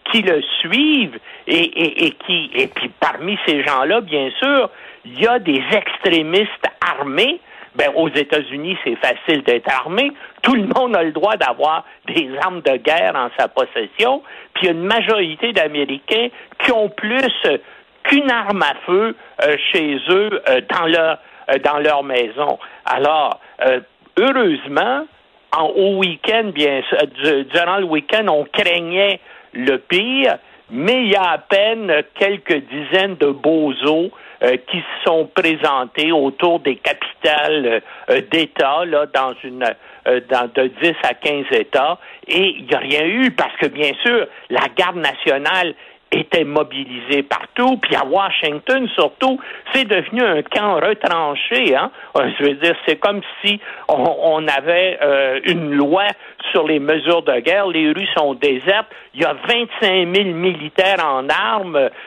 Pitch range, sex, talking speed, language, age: 150-245 Hz, male, 160 wpm, French, 60-79